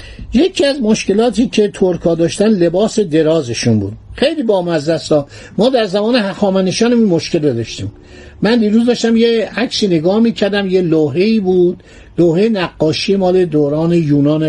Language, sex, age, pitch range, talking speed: Persian, male, 60-79, 150-215 Hz, 135 wpm